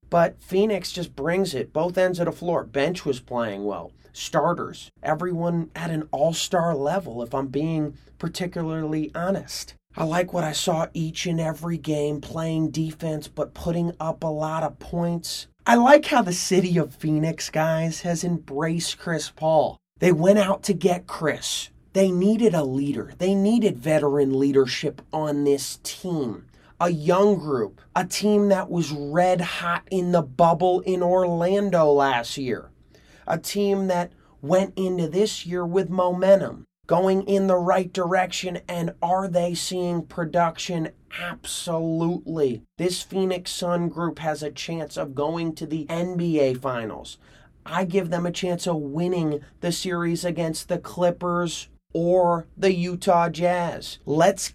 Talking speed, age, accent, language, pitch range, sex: 150 wpm, 30-49, American, English, 155-180 Hz, male